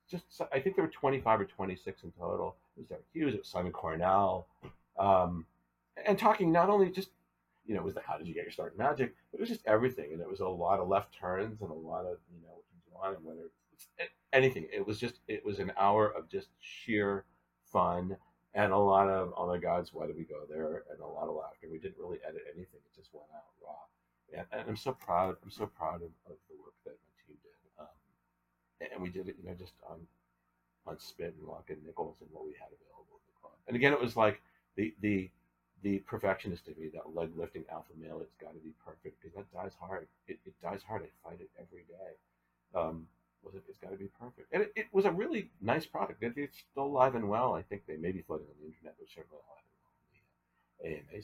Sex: male